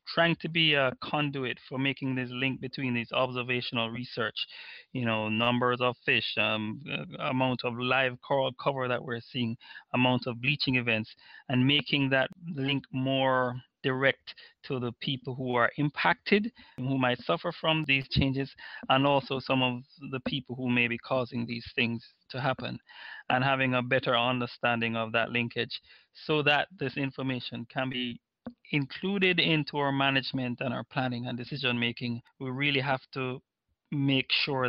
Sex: male